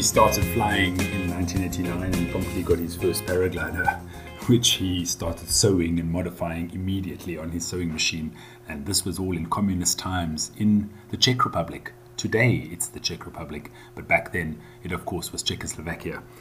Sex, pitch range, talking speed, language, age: male, 85-105 Hz, 165 wpm, English, 30-49